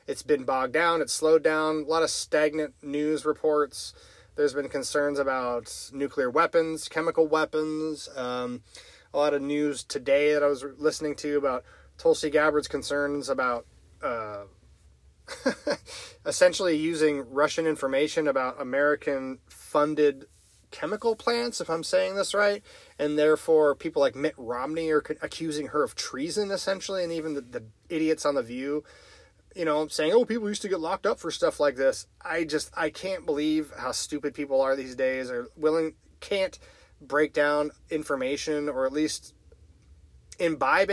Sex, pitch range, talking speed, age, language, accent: male, 135-165 Hz, 155 wpm, 20-39, English, American